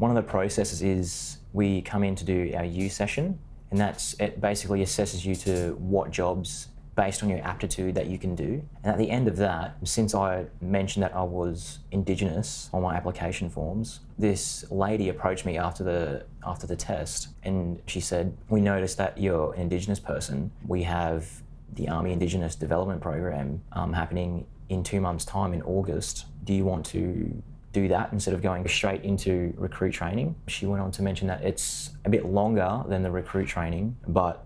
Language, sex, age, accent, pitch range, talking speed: English, male, 20-39, Australian, 90-100 Hz, 190 wpm